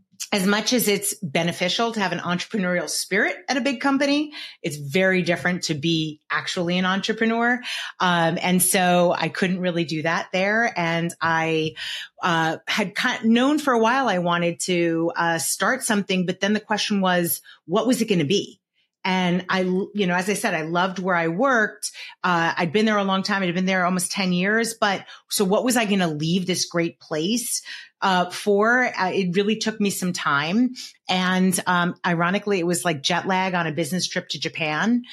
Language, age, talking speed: English, 30-49, 200 wpm